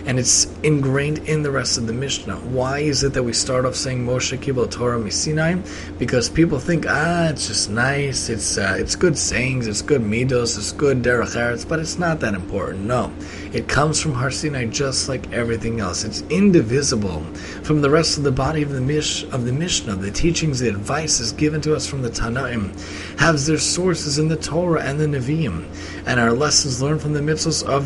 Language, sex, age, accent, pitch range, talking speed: English, male, 30-49, American, 105-145 Hz, 205 wpm